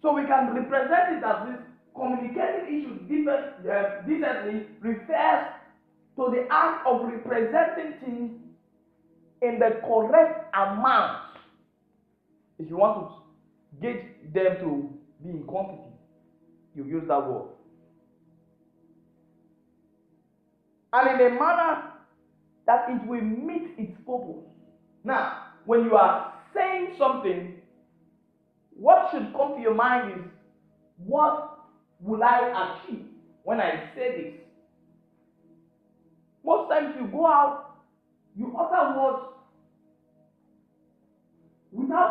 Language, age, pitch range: English, 50-69, 205-305 Hz